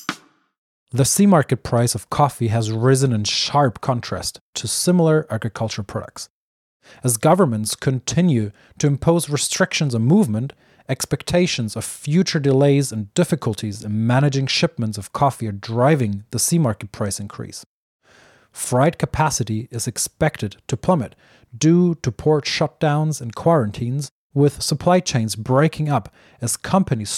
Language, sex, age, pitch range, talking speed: English, male, 30-49, 110-150 Hz, 130 wpm